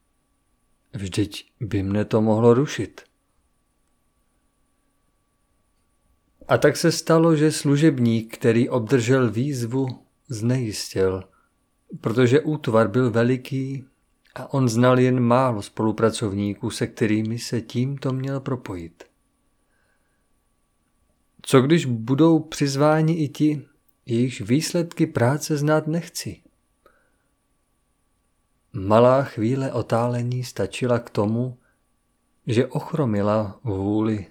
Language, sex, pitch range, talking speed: Czech, male, 110-140 Hz, 90 wpm